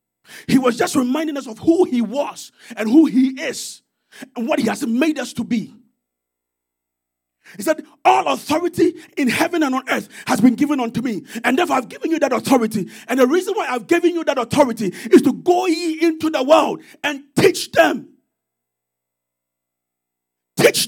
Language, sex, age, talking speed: English, male, 40-59, 180 wpm